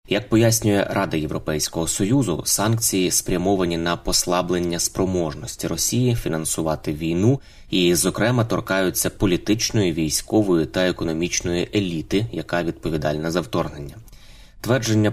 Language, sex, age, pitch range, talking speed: Ukrainian, male, 20-39, 85-105 Hz, 105 wpm